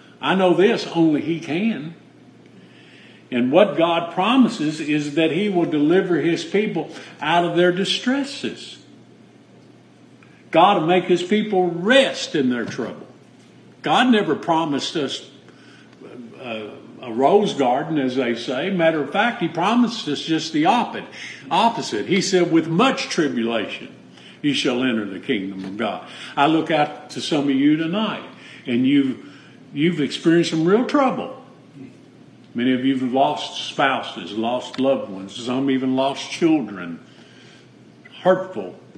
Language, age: English, 50-69